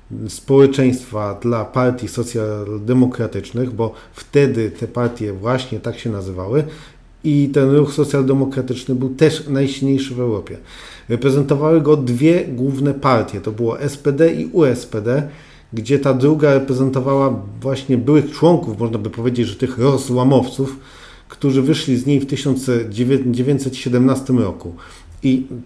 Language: Polish